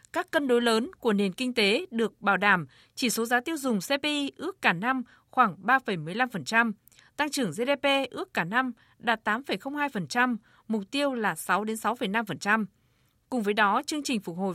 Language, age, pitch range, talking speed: Vietnamese, 20-39, 200-265 Hz, 175 wpm